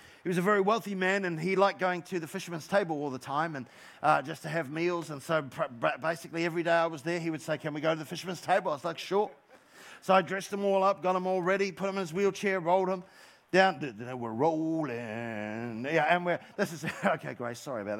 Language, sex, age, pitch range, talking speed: English, male, 40-59, 165-210 Hz, 250 wpm